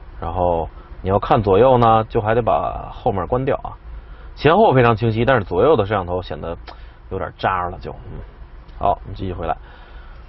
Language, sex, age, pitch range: Chinese, male, 30-49, 95-135 Hz